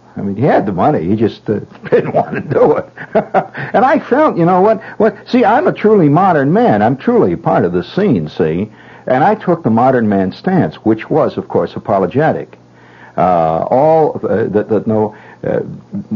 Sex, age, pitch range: male, 60-79, 85-140 Hz